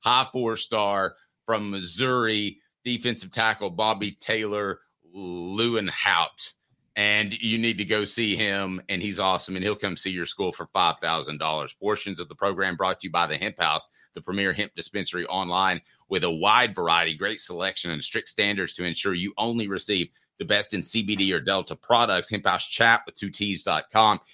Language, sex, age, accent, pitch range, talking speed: English, male, 30-49, American, 90-110 Hz, 170 wpm